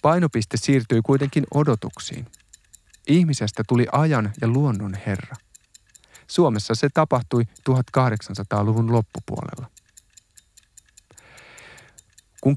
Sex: male